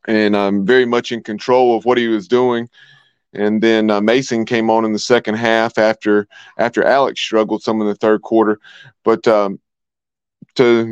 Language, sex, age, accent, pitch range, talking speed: English, male, 30-49, American, 110-130 Hz, 185 wpm